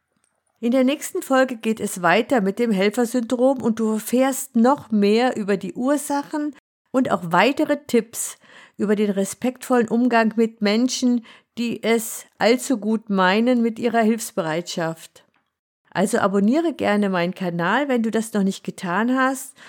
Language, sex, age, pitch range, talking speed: German, female, 50-69, 190-245 Hz, 145 wpm